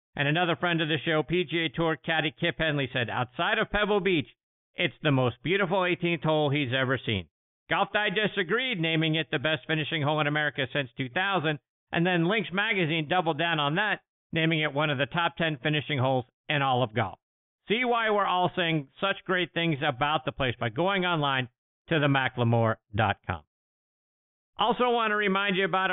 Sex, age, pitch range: male, 50-69, 140-190 Hz